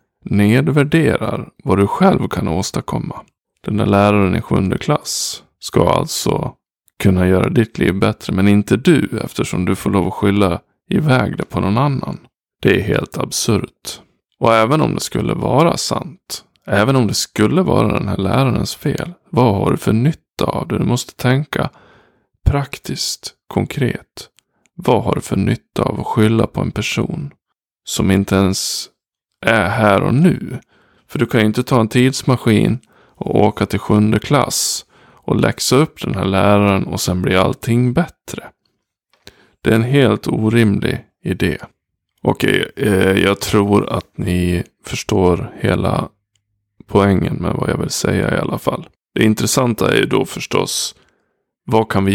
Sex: male